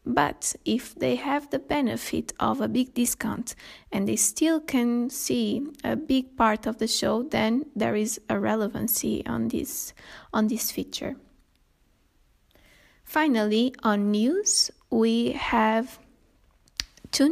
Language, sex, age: English, female, 20-39